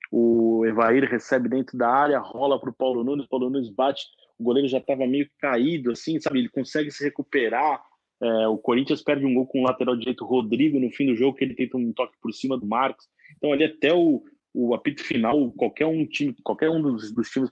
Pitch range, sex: 115-145 Hz, male